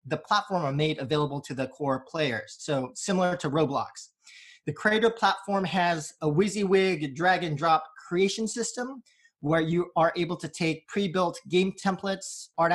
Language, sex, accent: English, male, American